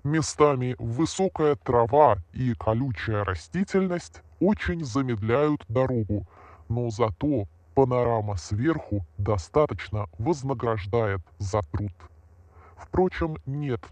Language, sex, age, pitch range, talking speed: Russian, female, 20-39, 105-150 Hz, 80 wpm